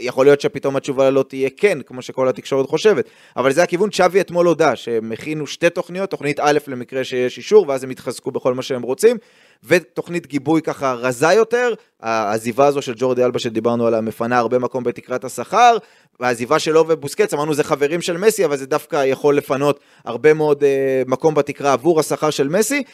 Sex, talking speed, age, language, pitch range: male, 190 wpm, 30-49, Hebrew, 135-185 Hz